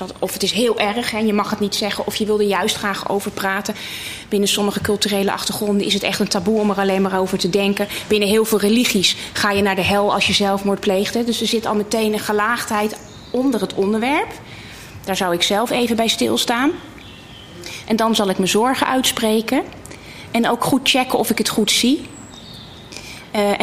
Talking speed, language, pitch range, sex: 205 wpm, Dutch, 195-225 Hz, female